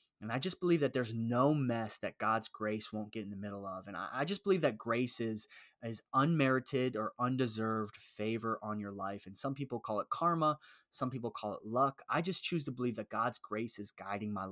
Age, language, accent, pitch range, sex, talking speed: 20-39, English, American, 110-140 Hz, male, 225 wpm